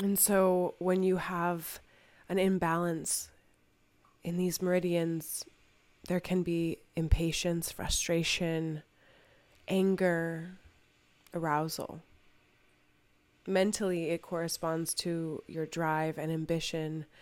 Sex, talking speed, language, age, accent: female, 85 wpm, English, 20-39, American